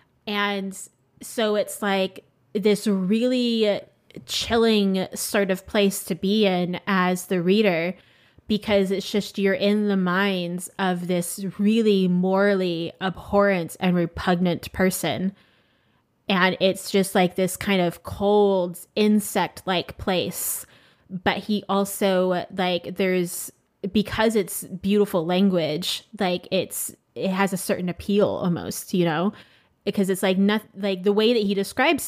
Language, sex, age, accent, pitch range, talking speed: English, female, 20-39, American, 180-205 Hz, 135 wpm